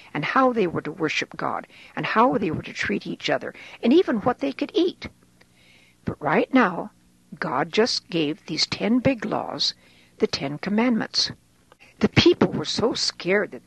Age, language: 60-79, English